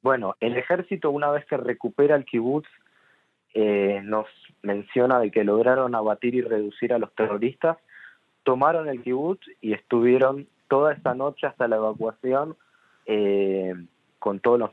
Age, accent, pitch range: 20-39, Argentinian, 110-145 Hz